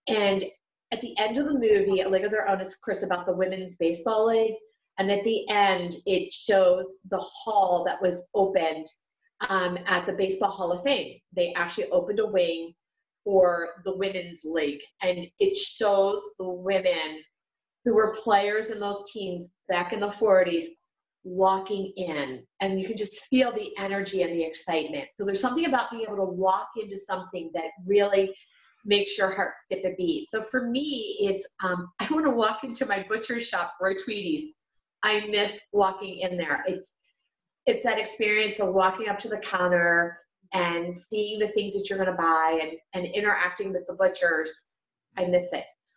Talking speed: 180 wpm